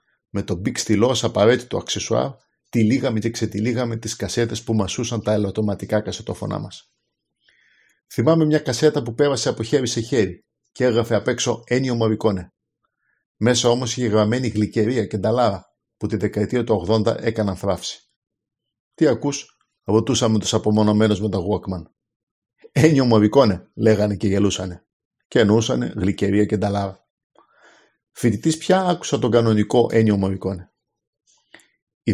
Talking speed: 125 wpm